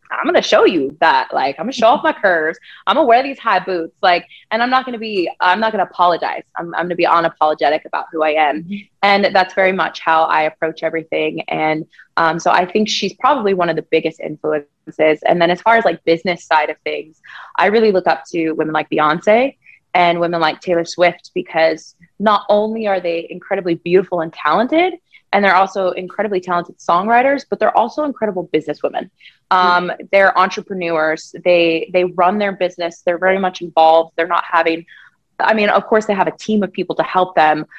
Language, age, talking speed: English, 20-39, 215 wpm